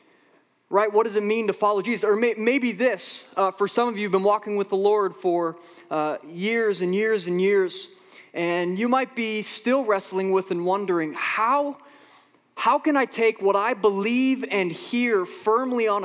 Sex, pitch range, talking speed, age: male, 165-215 Hz, 190 wpm, 20-39